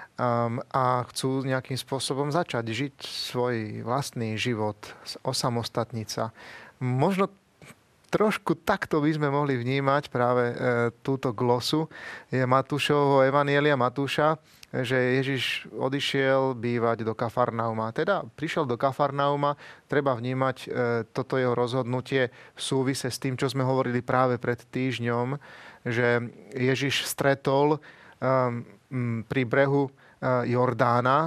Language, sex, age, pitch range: Slovak, male, 30-49, 120-140 Hz